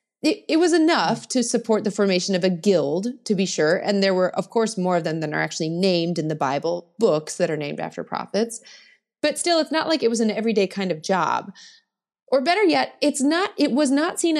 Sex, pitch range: female, 180-255 Hz